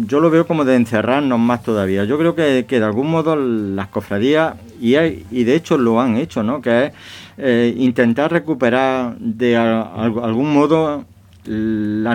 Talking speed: 170 wpm